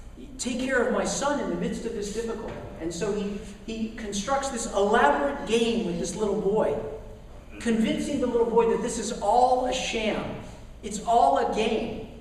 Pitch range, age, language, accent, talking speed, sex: 195-240 Hz, 40-59, English, American, 180 wpm, male